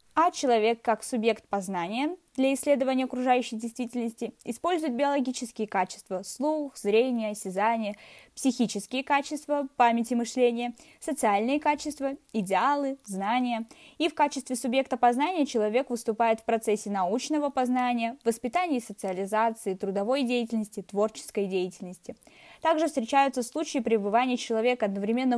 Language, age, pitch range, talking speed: Russian, 20-39, 210-275 Hz, 110 wpm